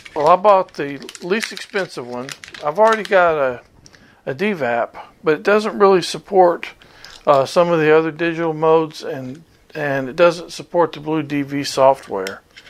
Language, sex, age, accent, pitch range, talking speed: English, male, 50-69, American, 135-175 Hz, 160 wpm